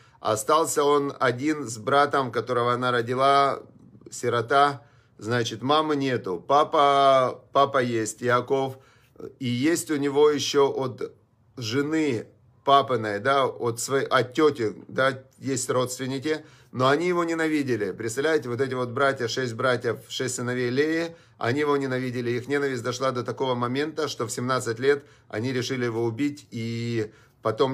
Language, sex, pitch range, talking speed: Russian, male, 120-140 Hz, 140 wpm